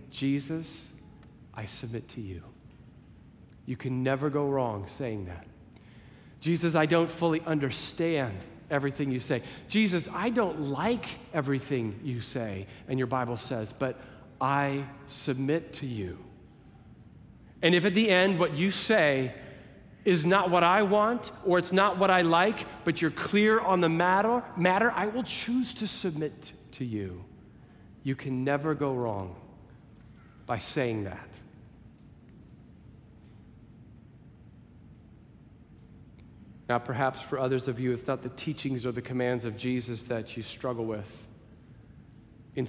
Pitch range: 115-160 Hz